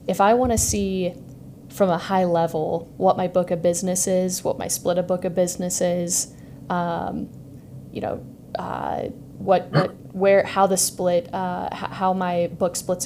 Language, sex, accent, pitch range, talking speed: English, female, American, 170-195 Hz, 175 wpm